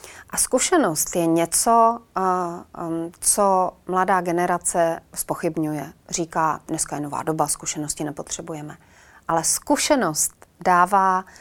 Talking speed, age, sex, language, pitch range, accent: 95 wpm, 30-49, female, Czech, 175-210 Hz, native